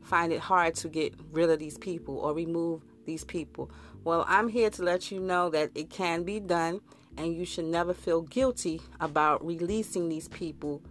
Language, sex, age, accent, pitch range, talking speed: English, female, 30-49, American, 155-195 Hz, 195 wpm